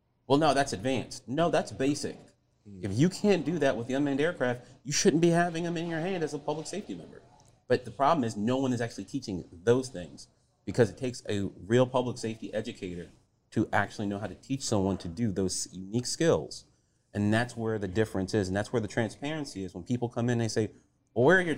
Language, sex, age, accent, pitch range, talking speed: English, male, 30-49, American, 105-140 Hz, 230 wpm